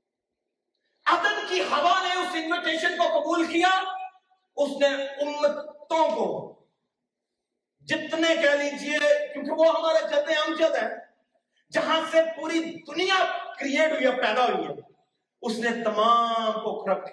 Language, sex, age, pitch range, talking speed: Urdu, male, 40-59, 195-300 Hz, 75 wpm